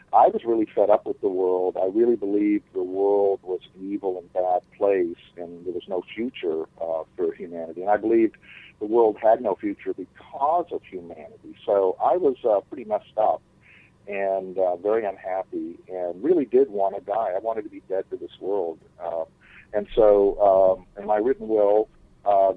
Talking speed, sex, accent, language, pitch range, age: 190 wpm, male, American, English, 90-130 Hz, 50-69